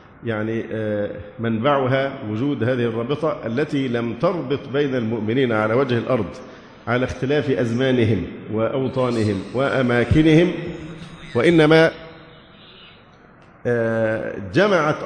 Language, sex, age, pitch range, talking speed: Arabic, male, 50-69, 120-150 Hz, 80 wpm